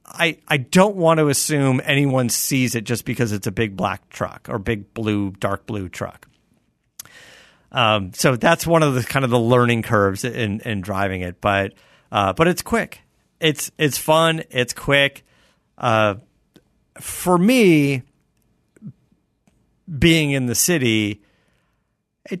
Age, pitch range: 50-69, 105-140 Hz